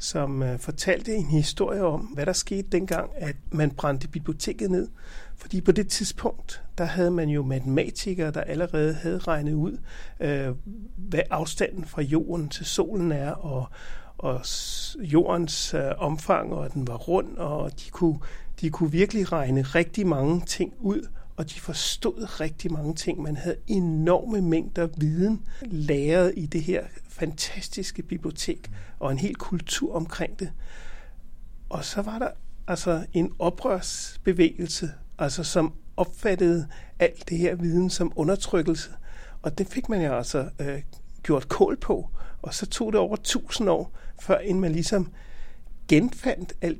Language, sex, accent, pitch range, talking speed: Danish, male, native, 155-185 Hz, 145 wpm